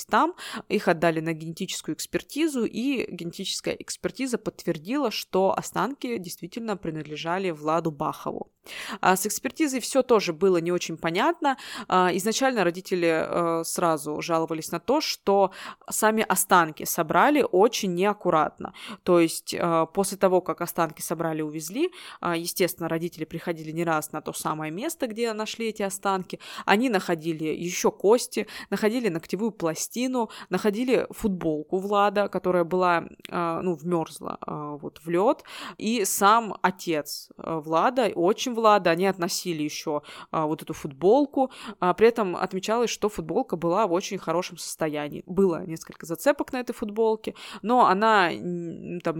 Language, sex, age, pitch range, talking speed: Russian, female, 20-39, 170-215 Hz, 130 wpm